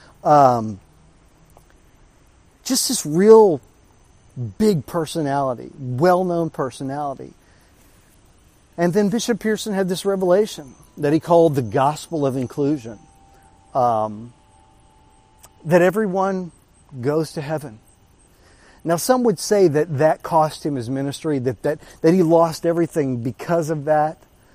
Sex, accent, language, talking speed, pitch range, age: male, American, English, 115 wpm, 125-165 Hz, 50-69